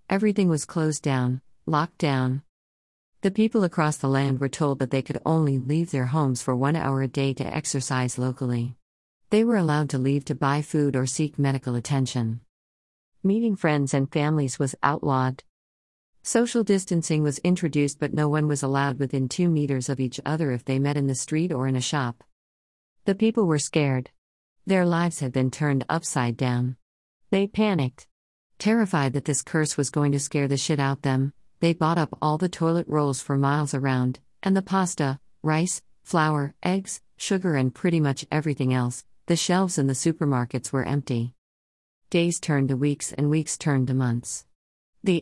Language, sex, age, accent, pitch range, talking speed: English, female, 50-69, American, 130-155 Hz, 180 wpm